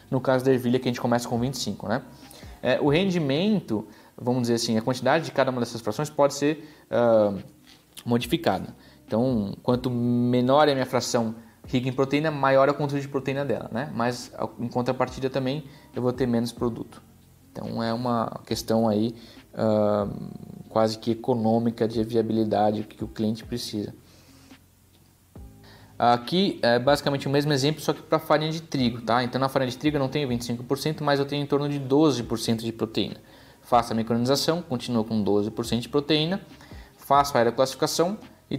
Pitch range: 115-140 Hz